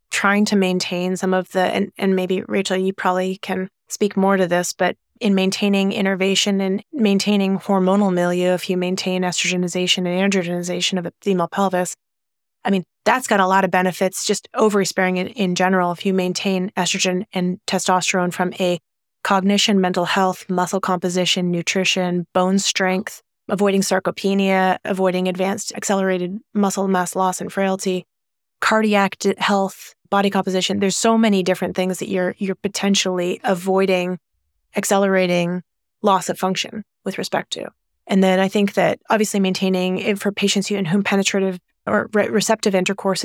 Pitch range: 180-195 Hz